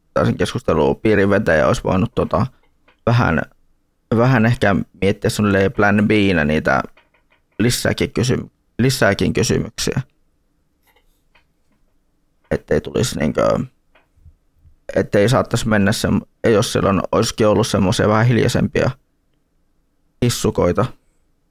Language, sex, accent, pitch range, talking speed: Finnish, male, native, 95-110 Hz, 90 wpm